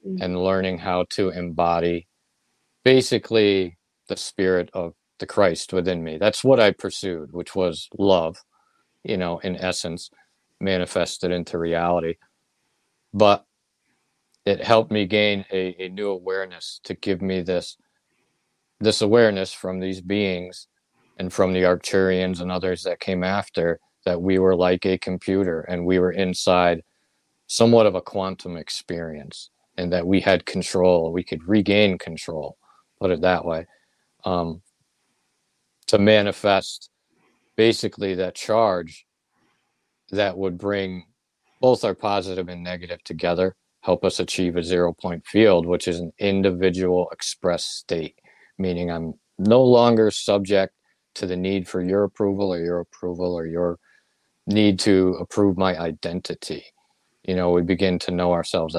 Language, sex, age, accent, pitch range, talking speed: English, male, 50-69, American, 90-100 Hz, 140 wpm